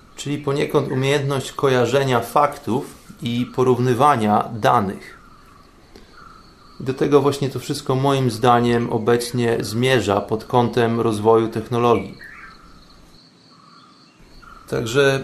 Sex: male